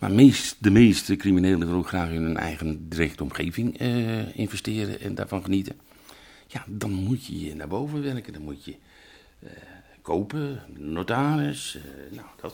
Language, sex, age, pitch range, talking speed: Dutch, male, 50-69, 80-130 Hz, 160 wpm